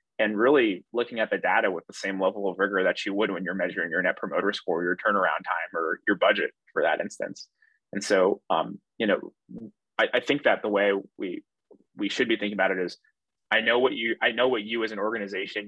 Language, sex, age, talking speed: English, male, 20-39, 235 wpm